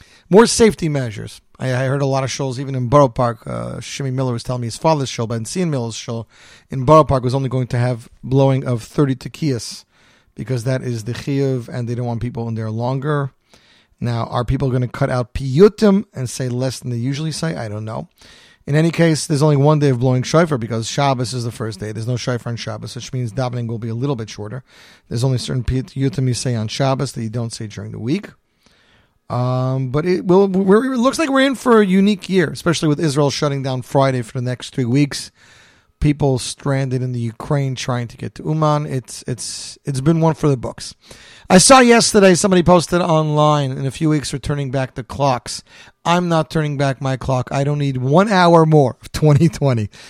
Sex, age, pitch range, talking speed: male, 40-59, 120-150 Hz, 225 wpm